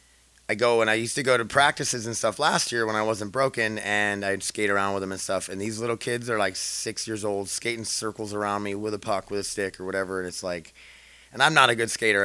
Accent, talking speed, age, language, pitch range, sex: American, 270 wpm, 30-49, English, 95-115 Hz, male